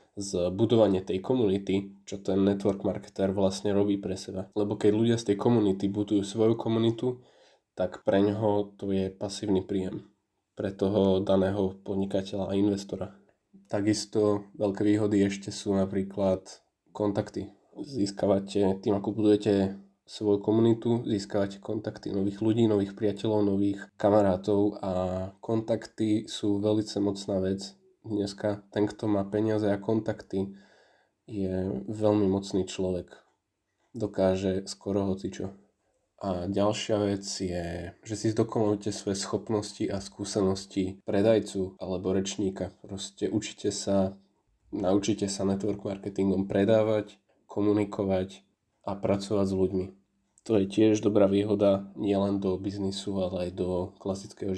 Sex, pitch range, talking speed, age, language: male, 95-105 Hz, 125 wpm, 20-39, Slovak